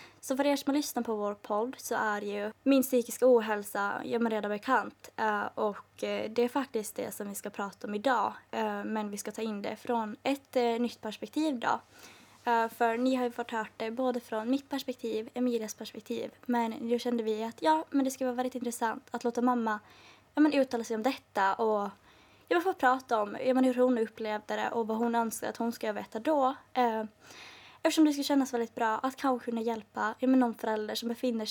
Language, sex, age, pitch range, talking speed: Swedish, female, 20-39, 220-255 Hz, 210 wpm